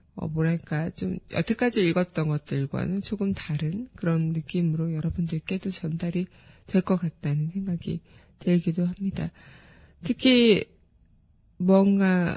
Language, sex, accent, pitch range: Korean, female, native, 165-200 Hz